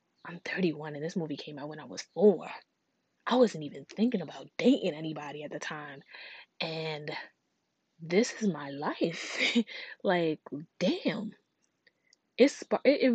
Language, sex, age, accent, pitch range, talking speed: English, female, 20-39, American, 155-210 Hz, 130 wpm